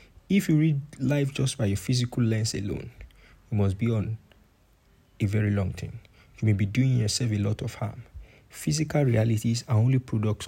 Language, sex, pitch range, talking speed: English, male, 110-135 Hz, 185 wpm